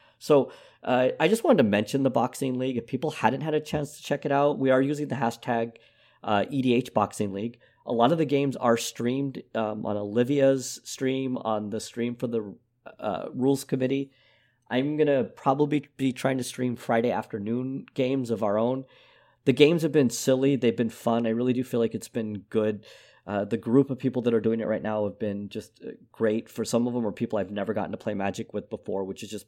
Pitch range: 110-130 Hz